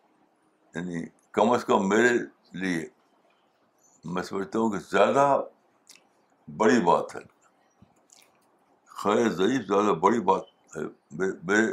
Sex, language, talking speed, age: male, Urdu, 105 wpm, 60-79